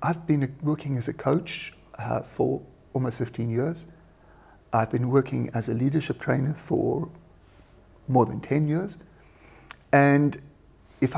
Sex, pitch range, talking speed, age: male, 130-170 Hz, 135 wpm, 50-69